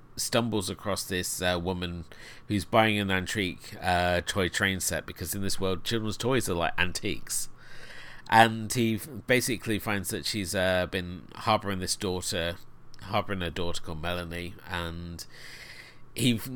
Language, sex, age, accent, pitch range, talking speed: English, male, 30-49, British, 90-110 Hz, 145 wpm